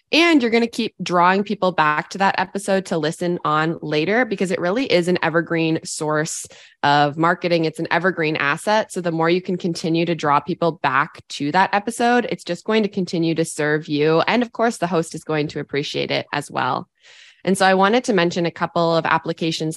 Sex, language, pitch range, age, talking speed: female, English, 165-195 Hz, 20-39, 215 wpm